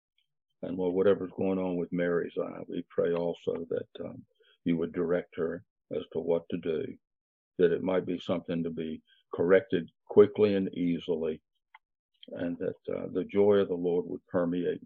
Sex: male